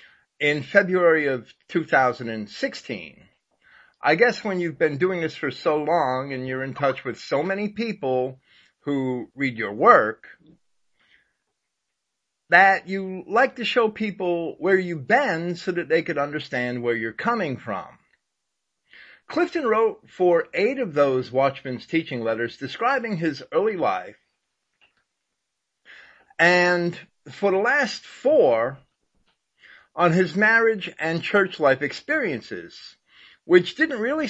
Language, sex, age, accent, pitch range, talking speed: English, male, 50-69, American, 150-220 Hz, 125 wpm